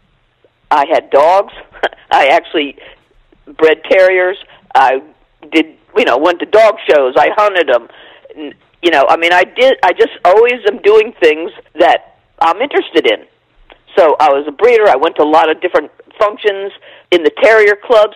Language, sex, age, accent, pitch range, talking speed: English, female, 50-69, American, 175-275 Hz, 170 wpm